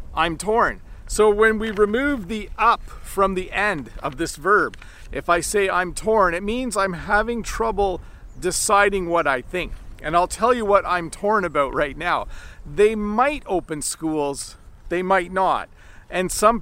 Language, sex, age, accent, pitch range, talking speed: English, male, 40-59, American, 170-215 Hz, 170 wpm